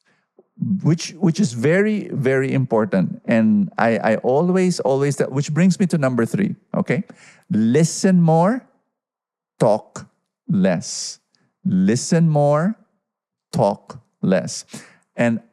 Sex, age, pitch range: male, 50-69, 125-195 Hz